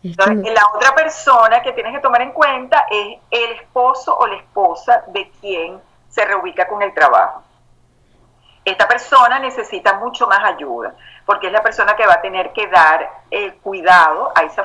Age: 40-59